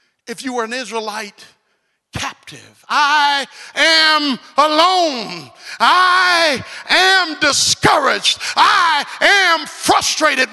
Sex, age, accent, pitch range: male, 40-59, American, 290-390 Hz